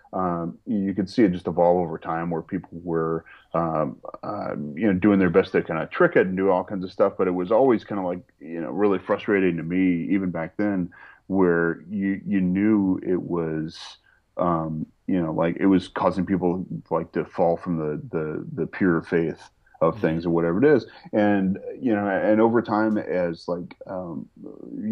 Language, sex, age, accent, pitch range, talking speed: English, male, 30-49, American, 85-95 Hz, 205 wpm